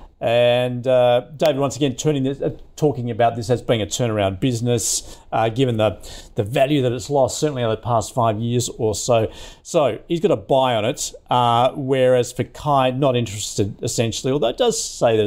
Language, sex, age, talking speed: English, male, 50-69, 200 wpm